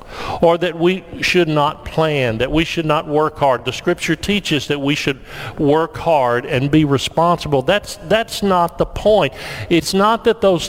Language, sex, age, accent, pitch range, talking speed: English, male, 50-69, American, 130-175 Hz, 180 wpm